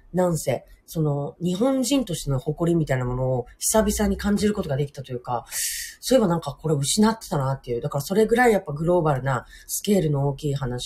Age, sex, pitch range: 30-49, female, 130-180 Hz